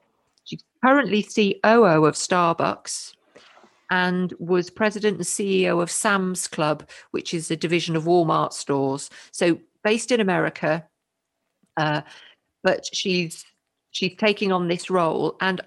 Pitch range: 175-235 Hz